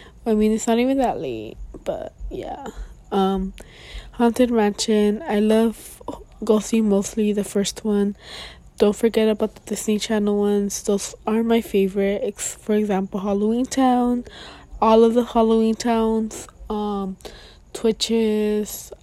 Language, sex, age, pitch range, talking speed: English, female, 20-39, 205-230 Hz, 130 wpm